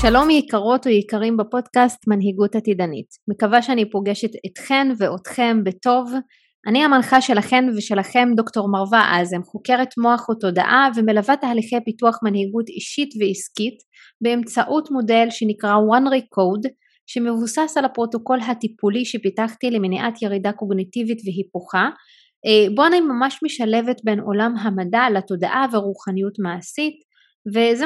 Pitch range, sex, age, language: 205-250 Hz, female, 20-39, Hebrew